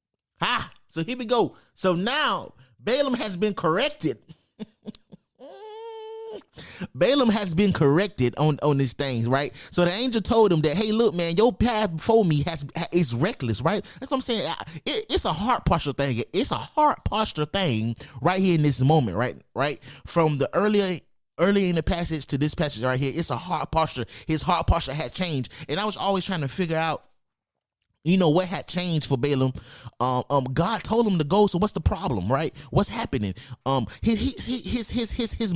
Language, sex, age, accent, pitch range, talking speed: English, male, 30-49, American, 135-200 Hz, 195 wpm